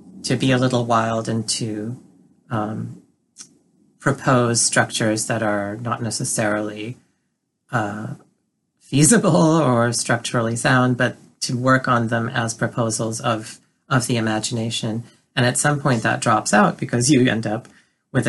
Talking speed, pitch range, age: 140 wpm, 110-125 Hz, 40-59